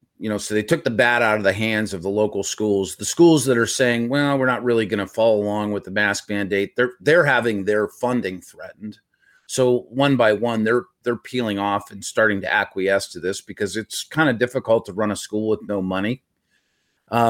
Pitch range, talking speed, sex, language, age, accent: 100-120 Hz, 225 wpm, male, English, 40-59, American